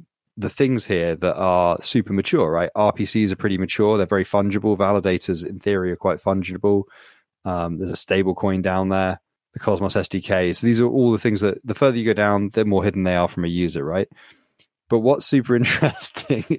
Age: 30-49